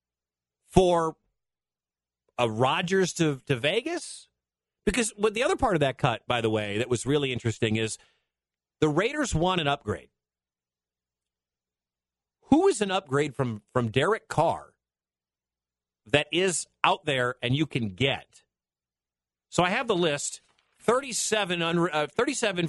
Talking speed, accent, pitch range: 135 wpm, American, 100-155 Hz